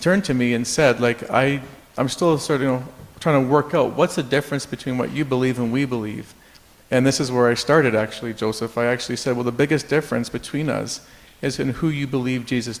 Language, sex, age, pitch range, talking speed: English, male, 40-59, 120-150 Hz, 230 wpm